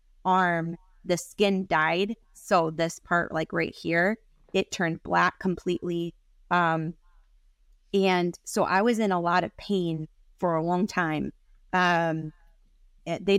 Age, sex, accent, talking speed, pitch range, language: 20-39, female, American, 135 wpm, 170-190 Hz, English